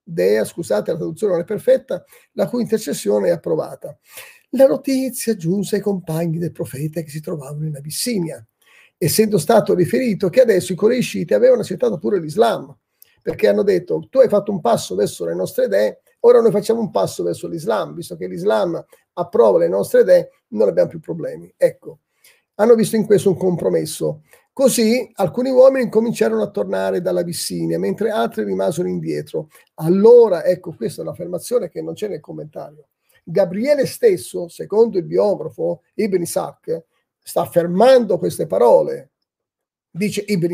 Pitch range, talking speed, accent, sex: 185-300 Hz, 155 wpm, native, male